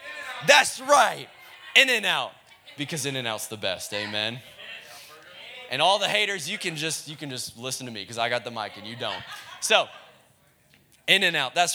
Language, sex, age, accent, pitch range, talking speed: English, male, 20-39, American, 130-170 Hz, 195 wpm